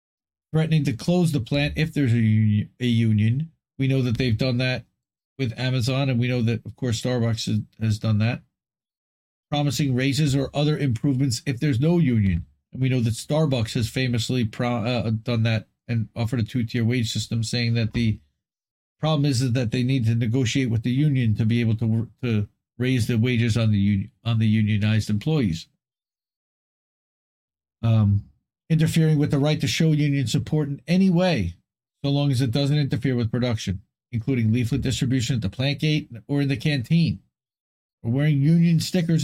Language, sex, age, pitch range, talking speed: English, male, 40-59, 115-145 Hz, 175 wpm